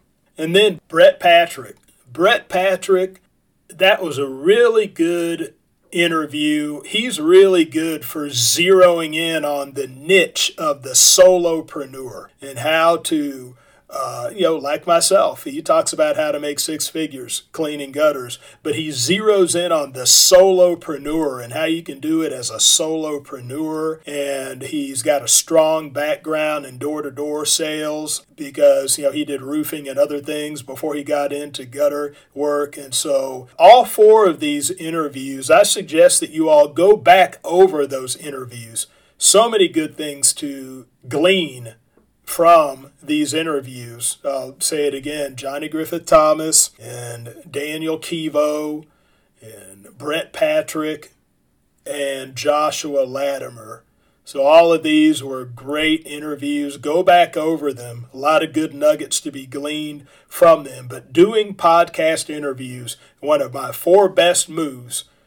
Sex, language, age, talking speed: male, English, 40-59, 140 wpm